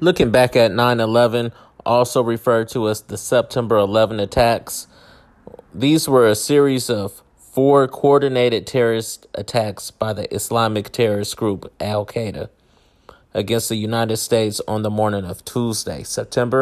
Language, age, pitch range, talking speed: English, 30-49, 105-125 Hz, 140 wpm